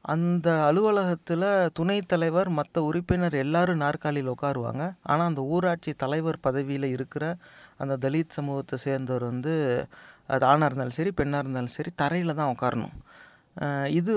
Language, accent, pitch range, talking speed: English, Indian, 145-180 Hz, 125 wpm